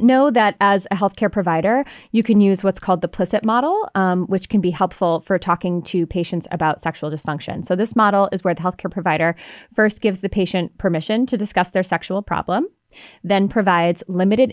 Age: 20-39